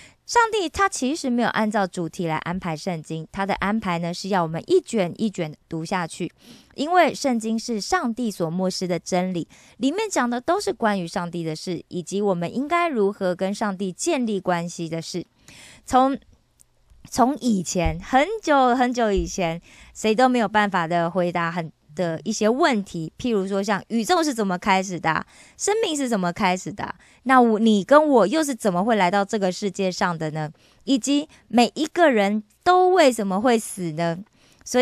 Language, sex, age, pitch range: Korean, female, 20-39, 180-255 Hz